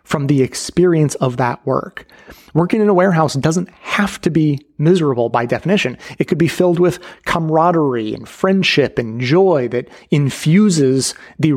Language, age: English, 30-49